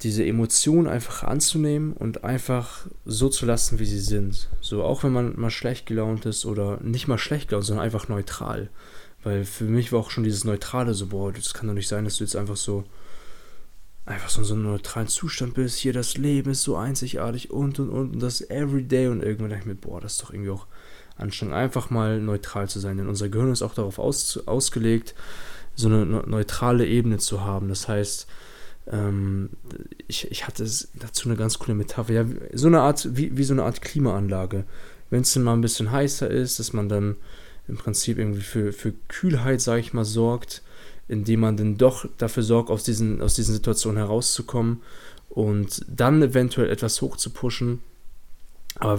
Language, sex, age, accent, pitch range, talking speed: German, male, 20-39, German, 105-125 Hz, 195 wpm